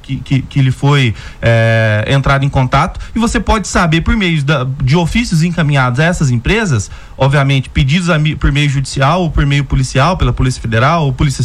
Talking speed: 180 wpm